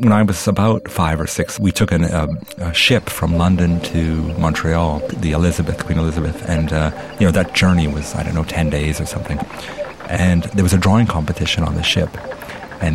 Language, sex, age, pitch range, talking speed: English, male, 50-69, 80-100 Hz, 210 wpm